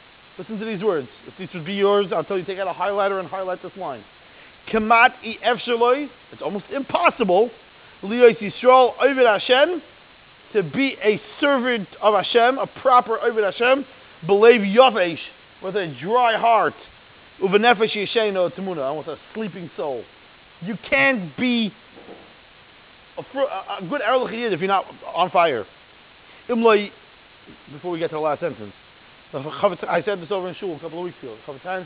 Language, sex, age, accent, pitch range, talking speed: English, male, 30-49, American, 175-230 Hz, 150 wpm